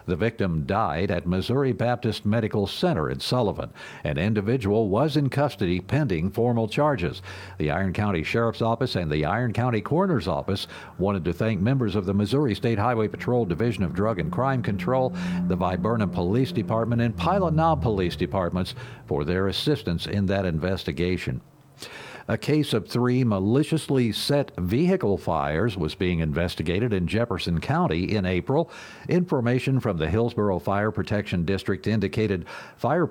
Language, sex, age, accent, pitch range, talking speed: English, male, 60-79, American, 95-125 Hz, 150 wpm